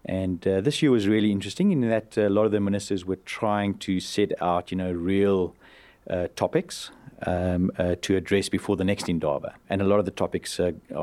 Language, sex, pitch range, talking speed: English, male, 90-100 Hz, 210 wpm